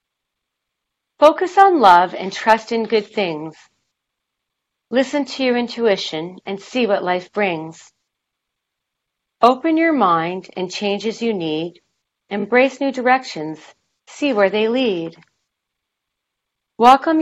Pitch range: 175-240 Hz